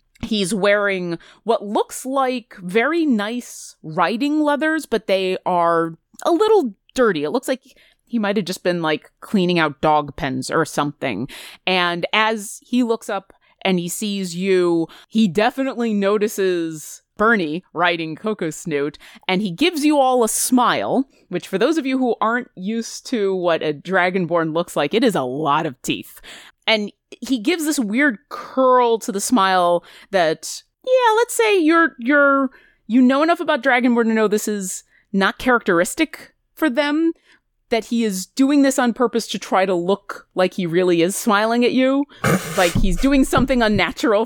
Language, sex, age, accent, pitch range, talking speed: English, female, 30-49, American, 180-250 Hz, 170 wpm